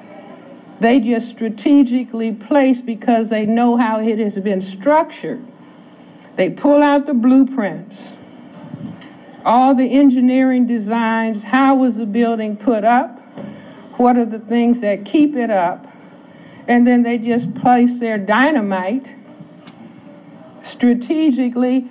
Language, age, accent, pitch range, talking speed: English, 60-79, American, 210-255 Hz, 120 wpm